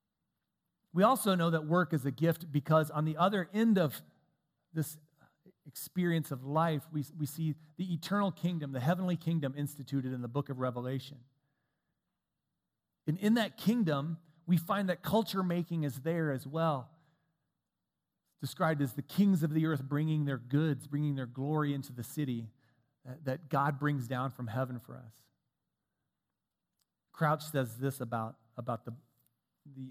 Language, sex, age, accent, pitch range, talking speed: English, male, 40-59, American, 130-160 Hz, 155 wpm